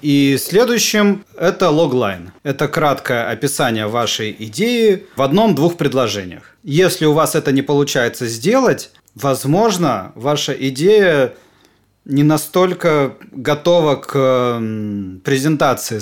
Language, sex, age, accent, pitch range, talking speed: Russian, male, 30-49, native, 115-155 Hz, 100 wpm